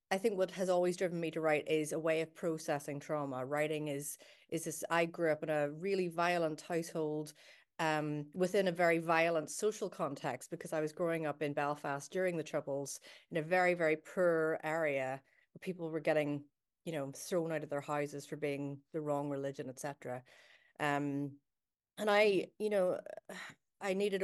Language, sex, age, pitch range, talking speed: English, female, 30-49, 150-205 Hz, 185 wpm